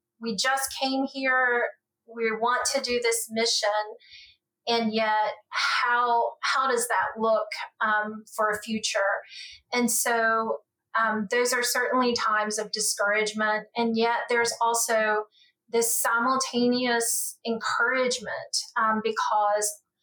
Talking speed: 115 wpm